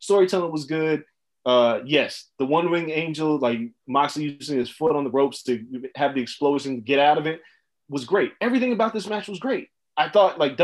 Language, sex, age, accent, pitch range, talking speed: English, male, 20-39, American, 140-225 Hz, 195 wpm